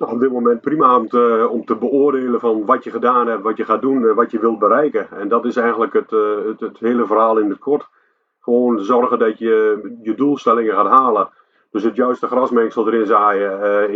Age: 40-59